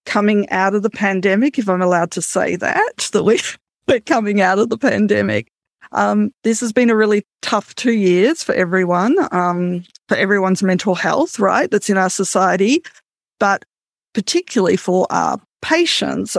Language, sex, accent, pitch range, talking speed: English, female, Australian, 185-220 Hz, 160 wpm